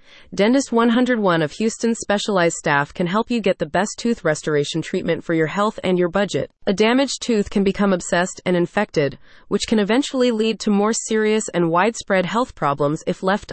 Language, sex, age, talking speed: English, female, 30-49, 185 wpm